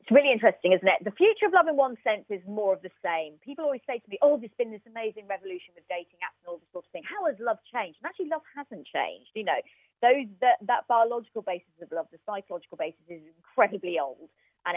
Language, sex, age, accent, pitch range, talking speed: English, female, 30-49, British, 180-245 Hz, 250 wpm